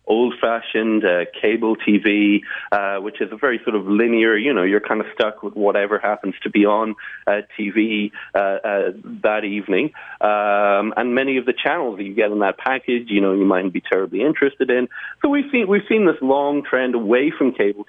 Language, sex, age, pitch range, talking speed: English, male, 40-59, 100-125 Hz, 210 wpm